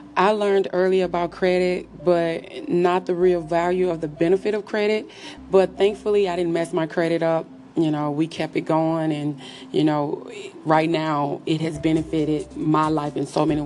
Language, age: English, 30-49